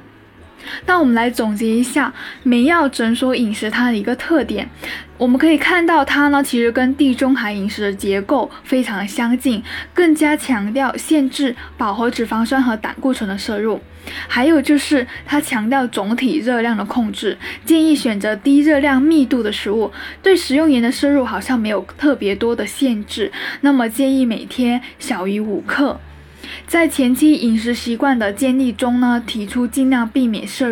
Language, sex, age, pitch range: Chinese, female, 10-29, 225-290 Hz